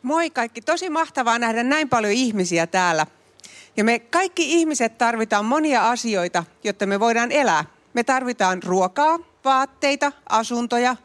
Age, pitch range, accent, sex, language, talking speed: 40-59, 205-290 Hz, native, female, Finnish, 135 wpm